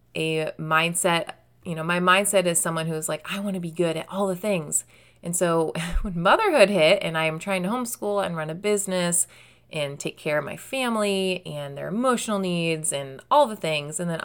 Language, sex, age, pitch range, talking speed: English, female, 20-39, 155-195 Hz, 210 wpm